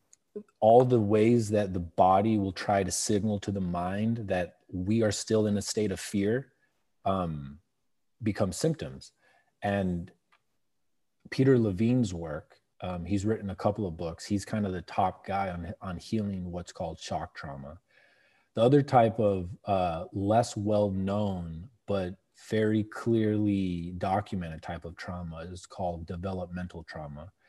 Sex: male